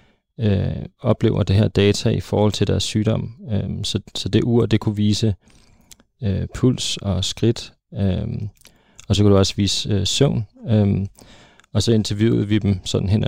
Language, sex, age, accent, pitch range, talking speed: Danish, male, 30-49, native, 100-115 Hz, 175 wpm